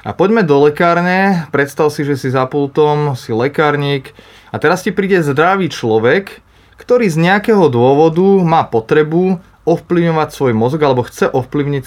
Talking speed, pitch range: 150 wpm, 125-165 Hz